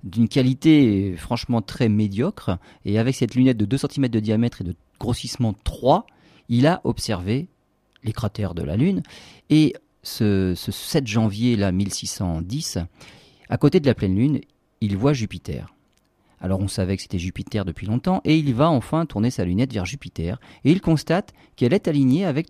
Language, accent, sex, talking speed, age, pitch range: French, French, male, 175 wpm, 40-59, 100-140 Hz